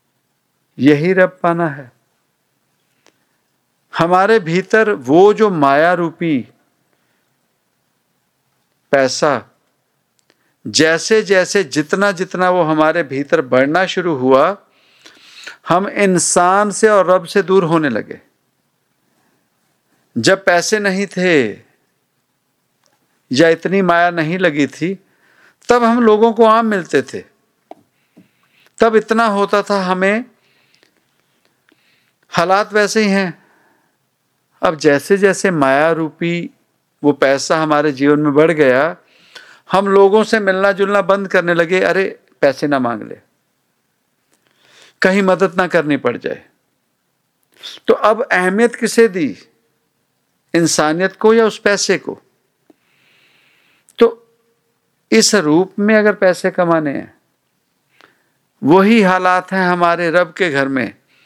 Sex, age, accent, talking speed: male, 50-69, Indian, 110 wpm